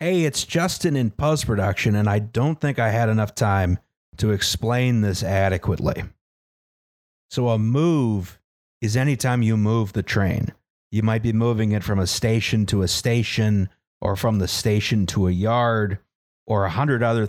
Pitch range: 95-115 Hz